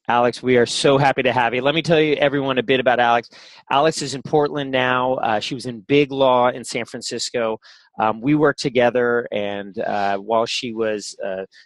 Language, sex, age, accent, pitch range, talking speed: English, male, 30-49, American, 115-140 Hz, 210 wpm